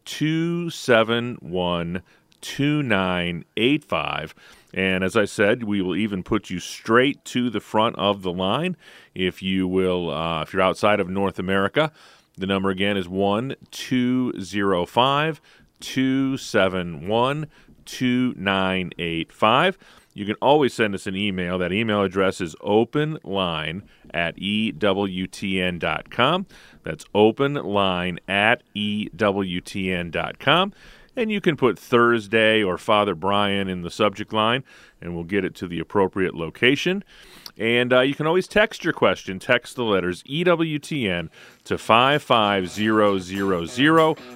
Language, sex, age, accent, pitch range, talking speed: English, male, 40-59, American, 95-125 Hz, 115 wpm